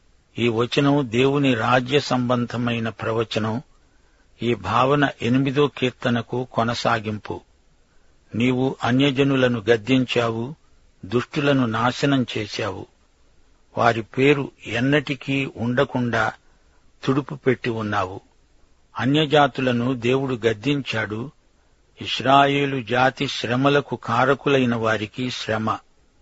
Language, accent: Telugu, native